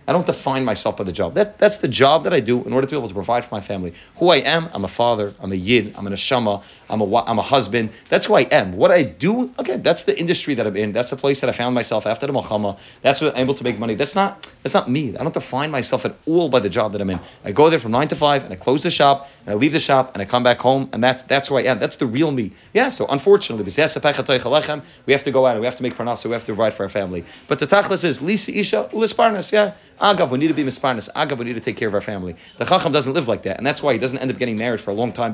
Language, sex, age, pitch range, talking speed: English, male, 30-49, 115-150 Hz, 305 wpm